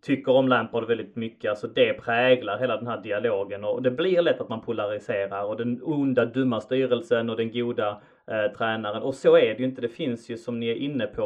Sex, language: male, Swedish